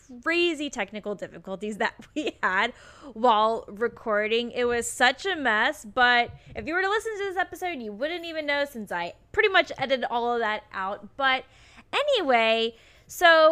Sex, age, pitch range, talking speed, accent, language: female, 10-29, 215-275 Hz, 170 wpm, American, English